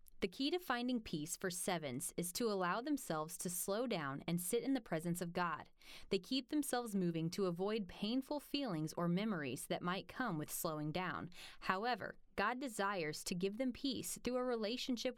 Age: 20-39